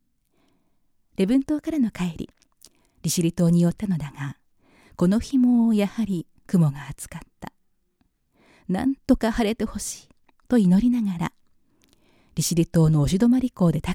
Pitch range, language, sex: 155-215 Hz, Japanese, female